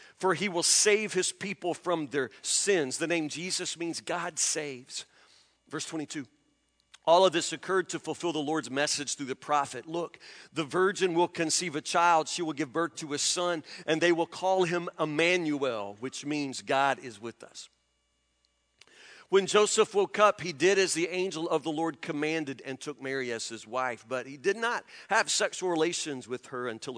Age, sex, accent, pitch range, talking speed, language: 50-69, male, American, 110-165 Hz, 185 wpm, English